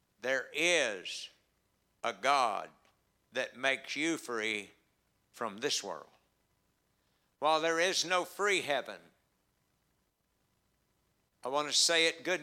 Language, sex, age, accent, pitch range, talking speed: English, male, 60-79, American, 140-165 Hz, 110 wpm